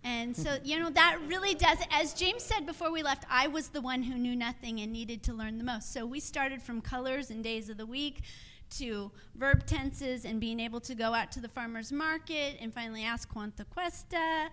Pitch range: 245-305 Hz